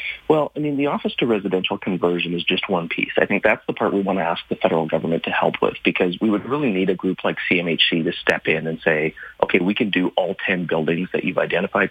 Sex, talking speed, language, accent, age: male, 255 wpm, English, American, 30-49